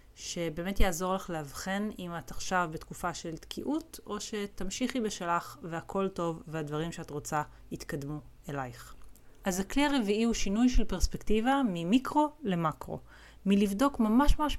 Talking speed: 130 wpm